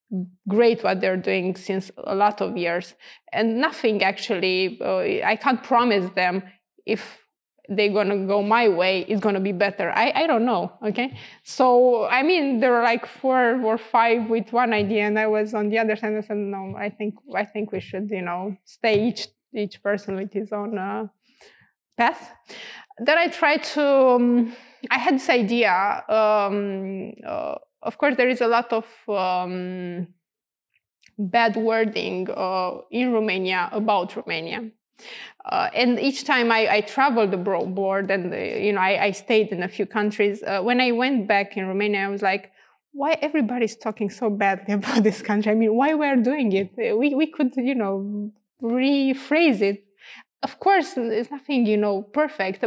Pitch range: 200-250 Hz